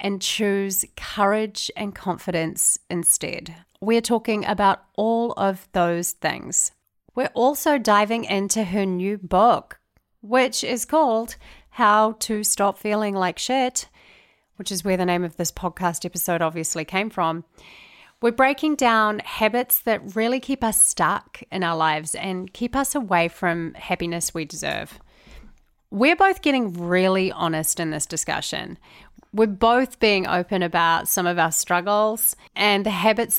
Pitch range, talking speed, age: 175-225 Hz, 145 wpm, 30-49